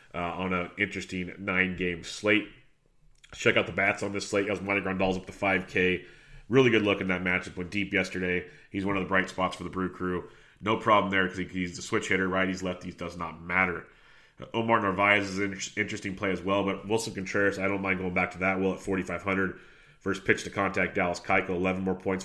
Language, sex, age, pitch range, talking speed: English, male, 30-49, 90-100 Hz, 230 wpm